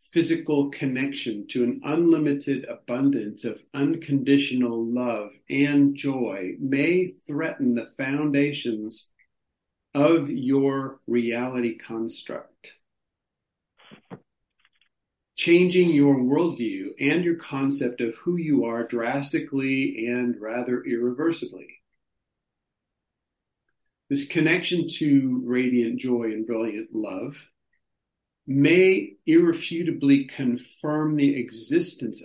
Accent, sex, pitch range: American, male, 125-160 Hz